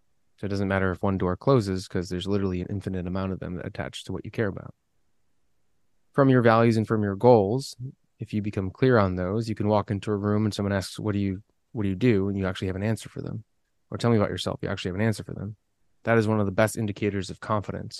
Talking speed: 265 wpm